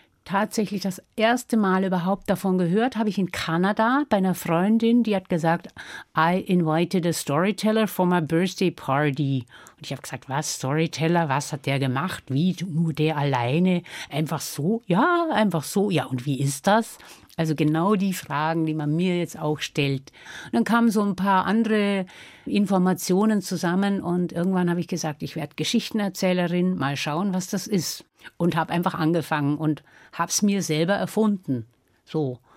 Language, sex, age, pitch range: German, female, 60-79, 155-200 Hz